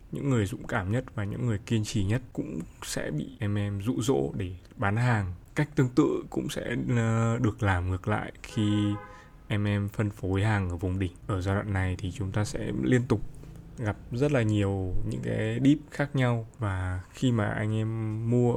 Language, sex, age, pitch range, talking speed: Vietnamese, male, 20-39, 95-120 Hz, 205 wpm